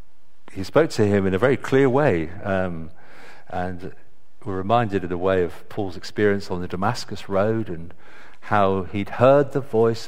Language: English